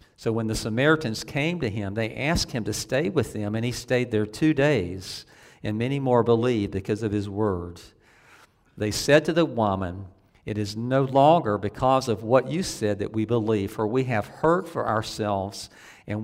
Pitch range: 100-115 Hz